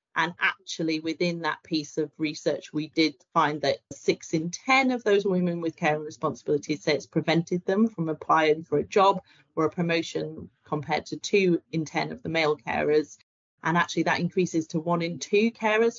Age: 30-49